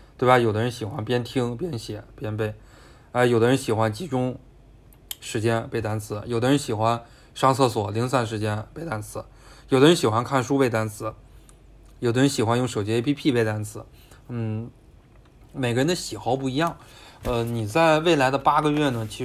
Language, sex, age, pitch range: Chinese, male, 20-39, 110-130 Hz